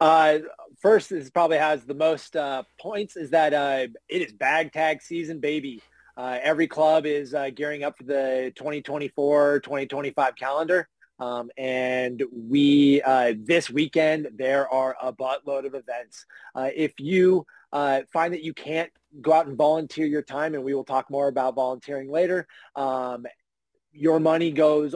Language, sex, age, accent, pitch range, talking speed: English, male, 30-49, American, 130-150 Hz, 155 wpm